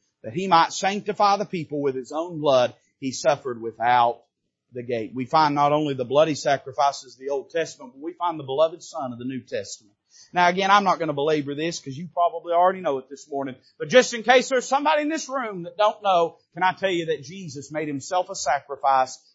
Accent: American